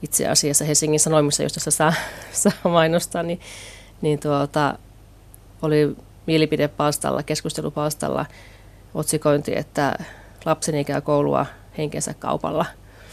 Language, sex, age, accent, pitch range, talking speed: Finnish, female, 30-49, native, 105-160 Hz, 90 wpm